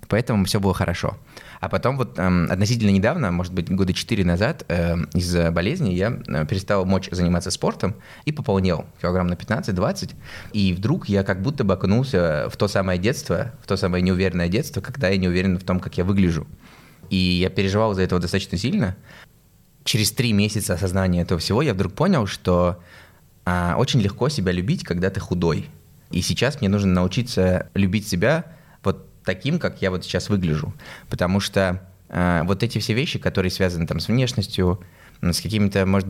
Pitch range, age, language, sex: 90-110 Hz, 20-39, Russian, male